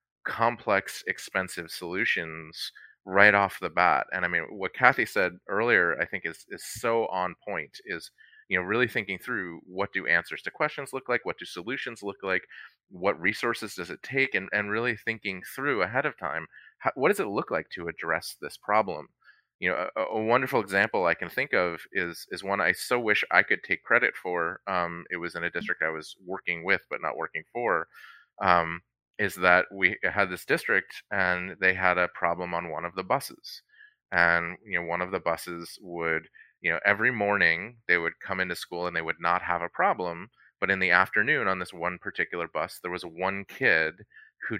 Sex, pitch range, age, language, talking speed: male, 85-100 Hz, 30-49, English, 205 wpm